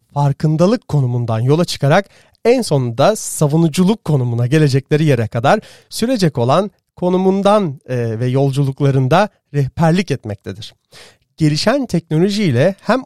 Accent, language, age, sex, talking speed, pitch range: native, Turkish, 40-59, male, 95 wpm, 125-185 Hz